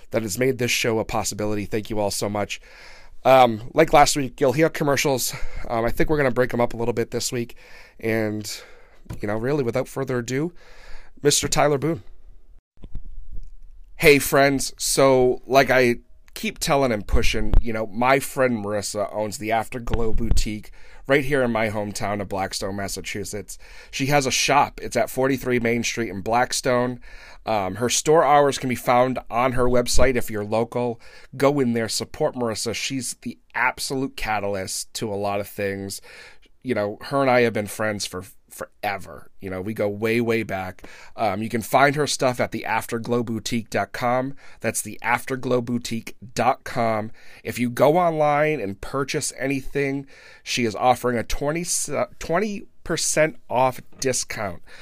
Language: English